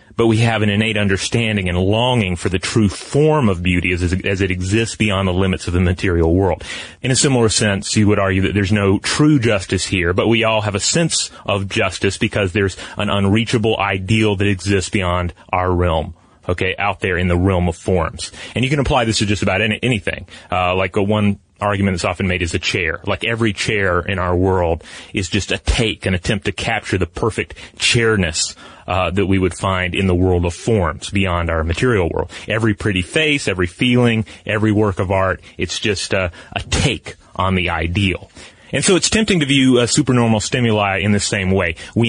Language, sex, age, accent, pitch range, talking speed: English, male, 30-49, American, 90-110 Hz, 205 wpm